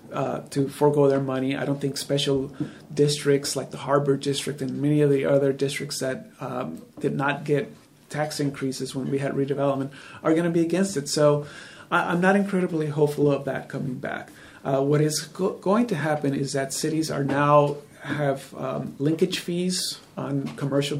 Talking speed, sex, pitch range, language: 185 wpm, male, 140-165 Hz, English